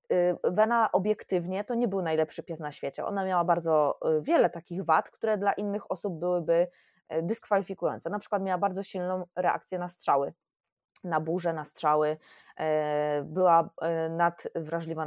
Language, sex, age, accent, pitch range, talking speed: Polish, female, 20-39, native, 170-205 Hz, 140 wpm